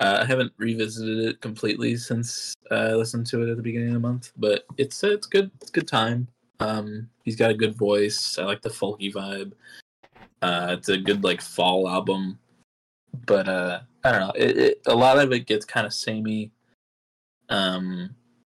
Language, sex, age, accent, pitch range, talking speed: English, male, 20-39, American, 90-115 Hz, 195 wpm